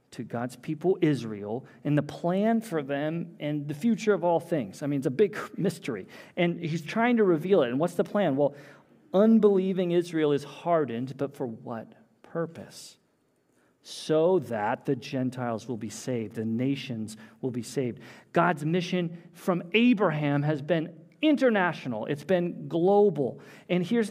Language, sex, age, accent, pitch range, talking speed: English, male, 40-59, American, 140-195 Hz, 160 wpm